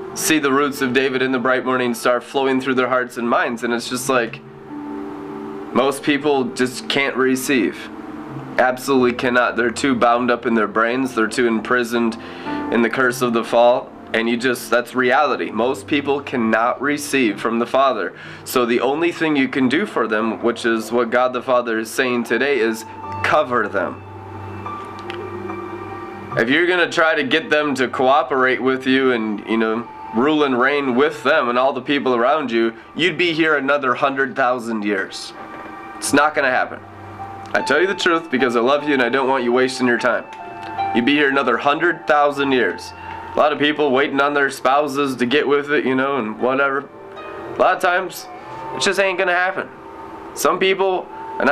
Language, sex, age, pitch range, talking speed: English, male, 20-39, 120-150 Hz, 190 wpm